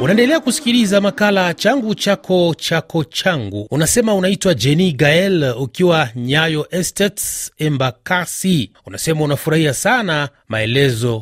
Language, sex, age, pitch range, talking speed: Swahili, male, 30-49, 130-175 Hz, 100 wpm